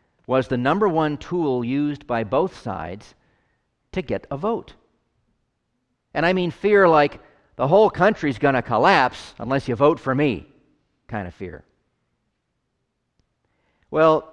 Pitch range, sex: 110-145 Hz, male